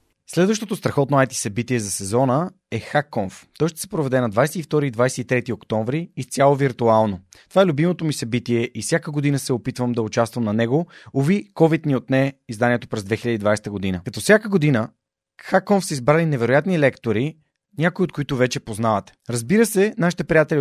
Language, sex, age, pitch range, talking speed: Bulgarian, male, 30-49, 115-165 Hz, 170 wpm